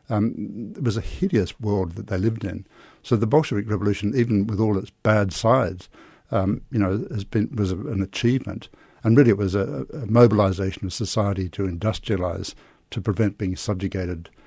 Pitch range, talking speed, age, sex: 95-115 Hz, 185 wpm, 60-79, male